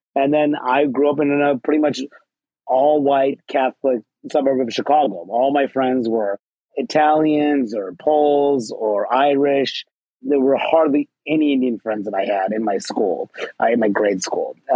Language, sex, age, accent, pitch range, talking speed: English, male, 30-49, American, 130-150 Hz, 165 wpm